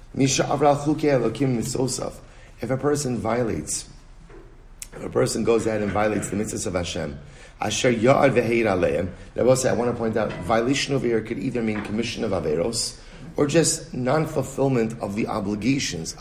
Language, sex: English, male